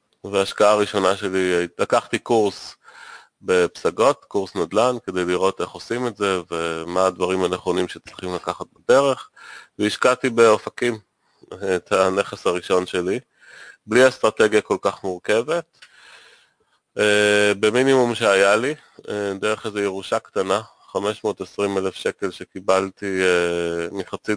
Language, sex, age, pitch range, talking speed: Hebrew, male, 30-49, 90-105 Hz, 105 wpm